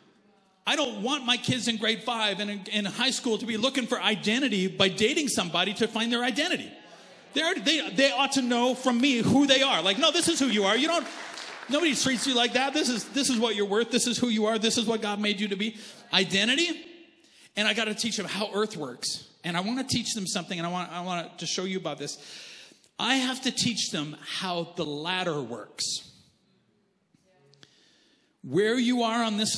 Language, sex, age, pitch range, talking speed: English, male, 40-59, 170-240 Hz, 220 wpm